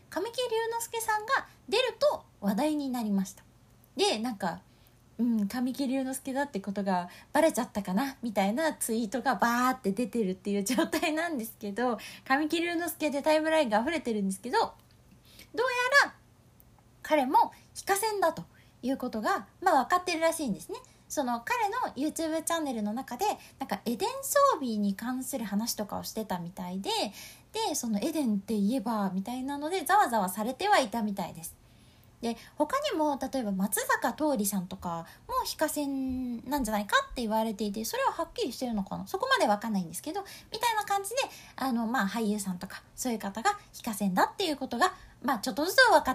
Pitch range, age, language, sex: 215-320 Hz, 20-39, Japanese, female